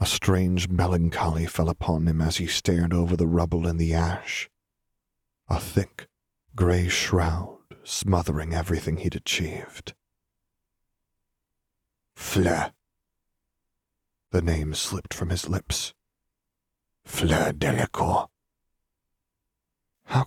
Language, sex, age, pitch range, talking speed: English, male, 40-59, 80-90 Hz, 100 wpm